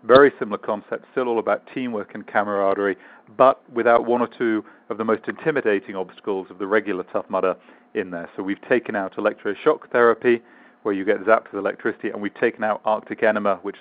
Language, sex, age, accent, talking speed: English, male, 40-59, British, 195 wpm